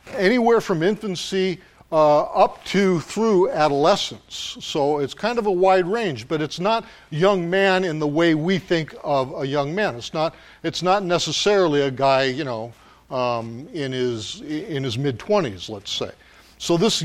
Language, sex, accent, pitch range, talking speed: English, male, American, 135-185 Hz, 170 wpm